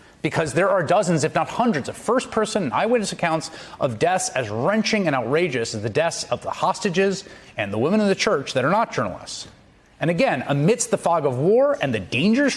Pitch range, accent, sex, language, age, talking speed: 145-210 Hz, American, male, English, 30-49, 210 wpm